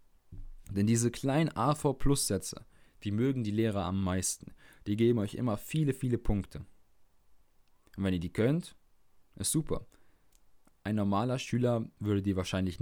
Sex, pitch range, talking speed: male, 95-115 Hz, 150 wpm